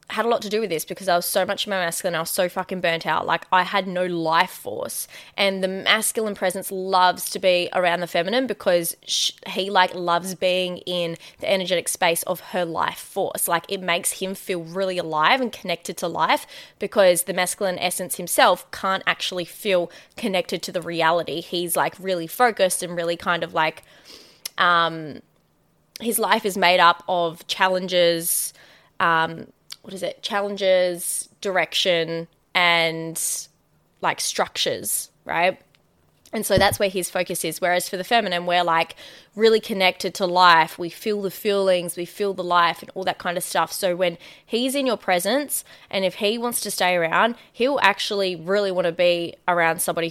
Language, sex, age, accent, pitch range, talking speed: English, female, 20-39, Australian, 170-195 Hz, 180 wpm